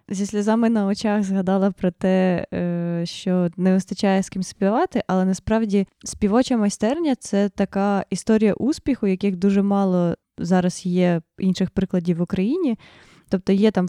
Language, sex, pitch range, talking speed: Ukrainian, female, 185-215 Hz, 145 wpm